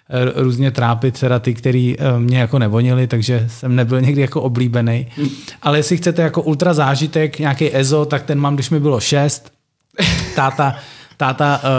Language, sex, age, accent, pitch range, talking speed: Czech, male, 30-49, native, 130-165 Hz, 160 wpm